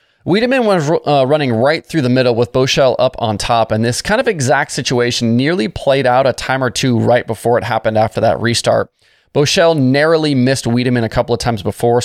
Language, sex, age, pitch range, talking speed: English, male, 20-39, 110-145 Hz, 210 wpm